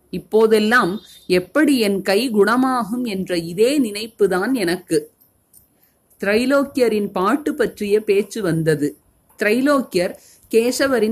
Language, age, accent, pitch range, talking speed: Tamil, 30-49, native, 180-240 Hz, 85 wpm